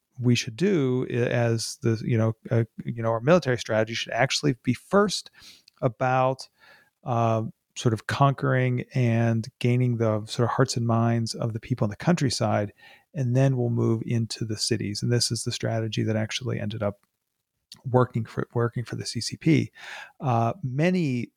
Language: English